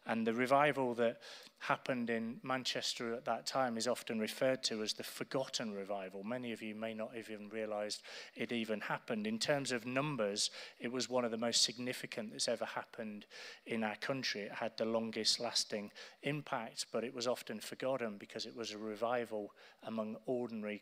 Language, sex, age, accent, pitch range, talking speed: English, male, 30-49, British, 110-120 Hz, 185 wpm